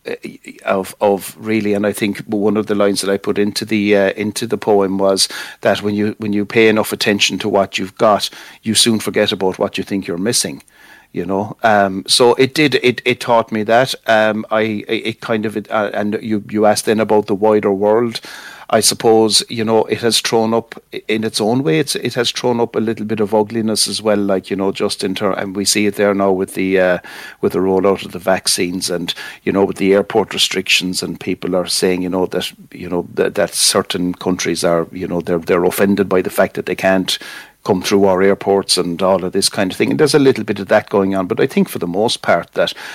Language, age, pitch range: English, 60-79, 95-110 Hz